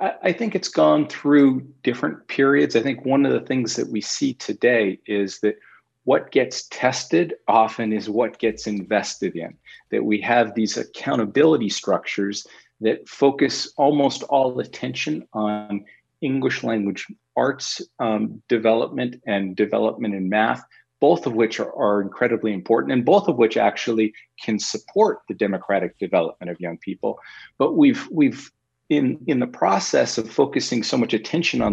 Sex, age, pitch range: male, 40-59, 105-130 Hz